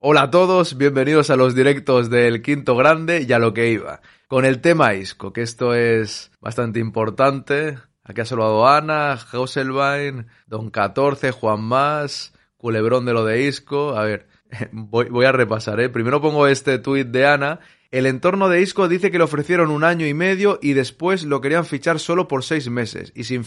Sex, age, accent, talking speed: male, 30-49, Spanish, 185 wpm